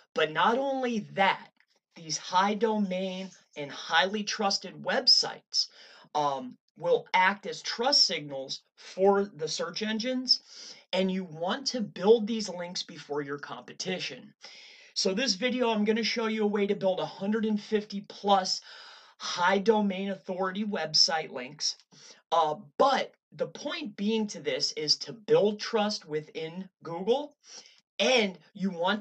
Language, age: English, 30-49